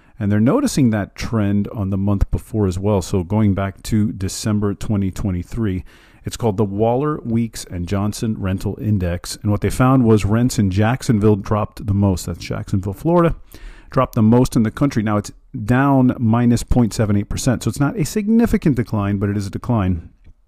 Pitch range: 95-115 Hz